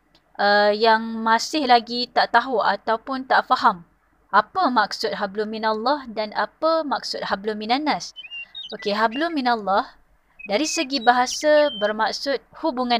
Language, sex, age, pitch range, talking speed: Malay, female, 20-39, 210-260 Hz, 115 wpm